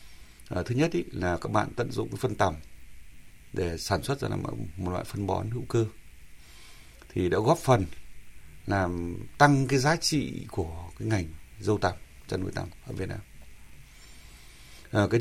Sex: male